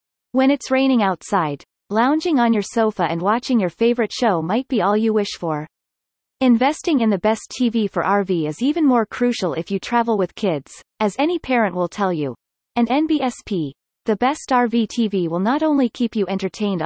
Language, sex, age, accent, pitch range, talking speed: English, female, 30-49, American, 185-245 Hz, 190 wpm